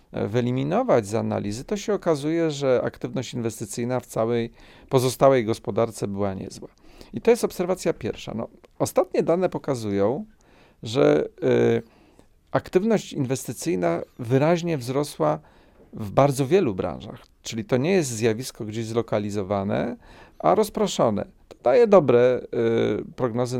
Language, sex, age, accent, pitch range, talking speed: Polish, male, 40-59, native, 115-160 Hz, 110 wpm